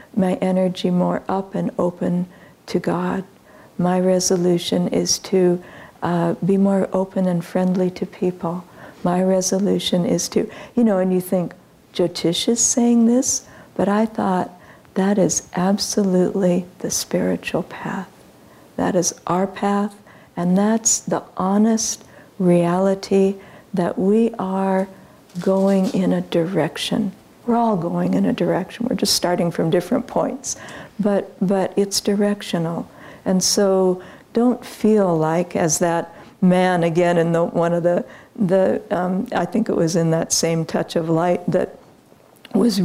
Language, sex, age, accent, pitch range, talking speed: English, female, 60-79, American, 175-200 Hz, 145 wpm